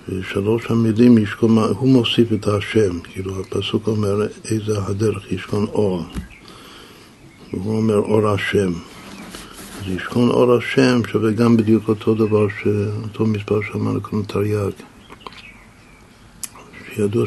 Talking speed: 120 wpm